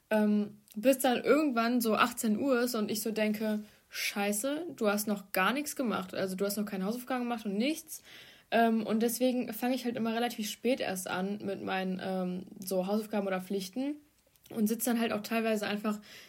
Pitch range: 210-245 Hz